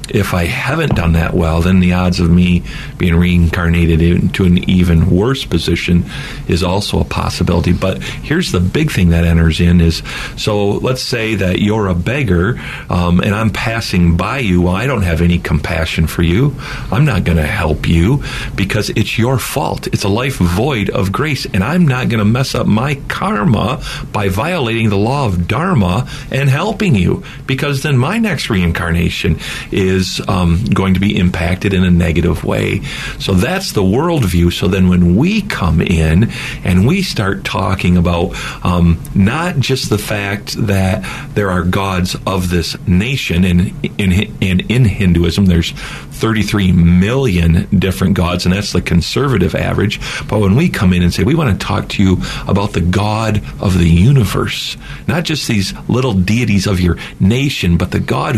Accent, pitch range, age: American, 90-125 Hz, 50-69